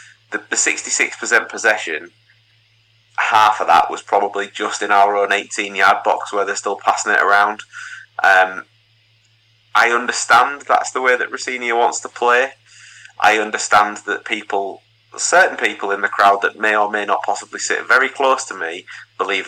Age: 20-39